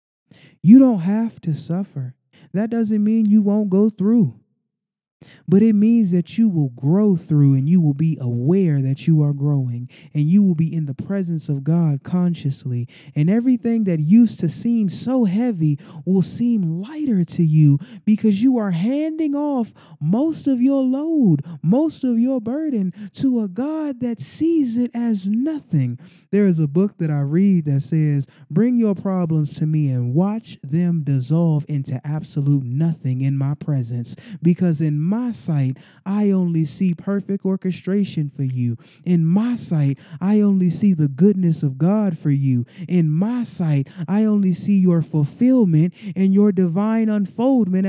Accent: American